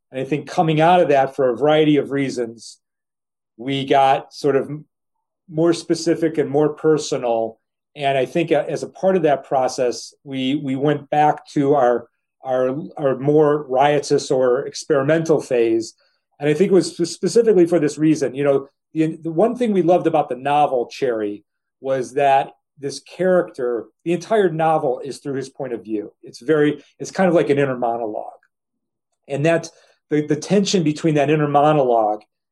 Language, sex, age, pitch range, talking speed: English, male, 40-59, 130-160 Hz, 175 wpm